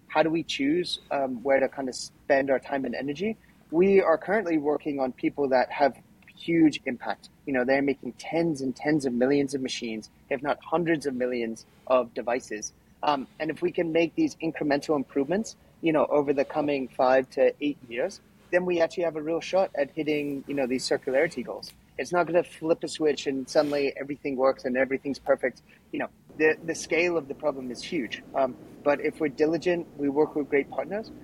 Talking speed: 205 wpm